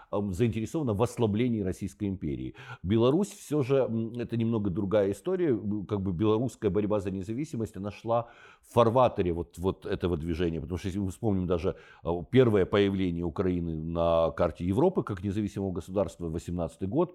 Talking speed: 155 wpm